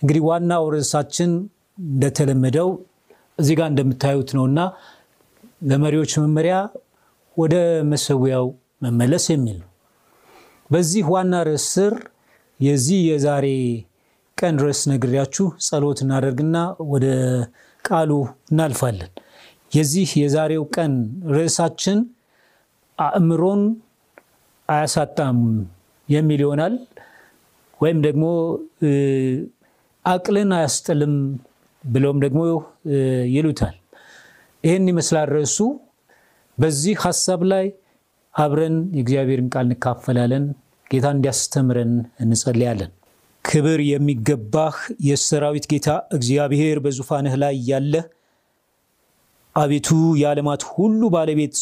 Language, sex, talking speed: Amharic, male, 75 wpm